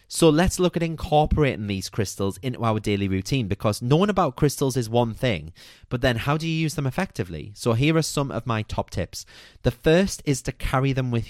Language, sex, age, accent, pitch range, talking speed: English, male, 30-49, British, 105-155 Hz, 220 wpm